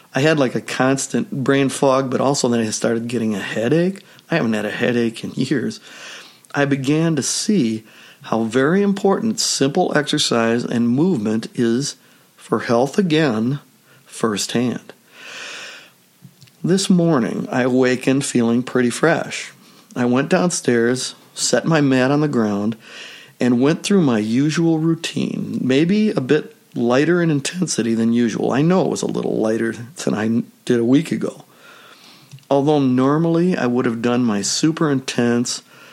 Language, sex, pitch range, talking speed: English, male, 120-155 Hz, 150 wpm